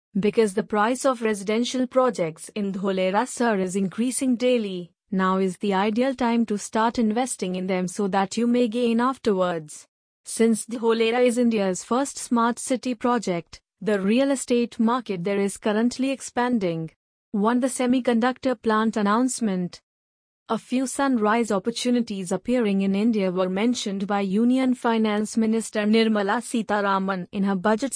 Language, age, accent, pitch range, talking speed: English, 30-49, Indian, 195-245 Hz, 145 wpm